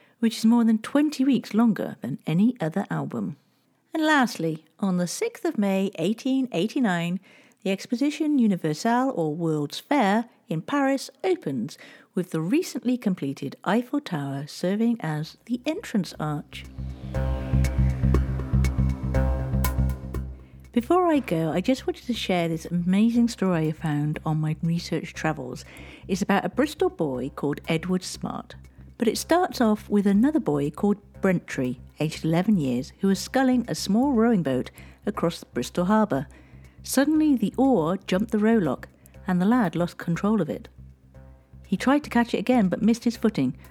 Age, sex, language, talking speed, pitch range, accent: 50-69, female, English, 150 wpm, 145-235 Hz, British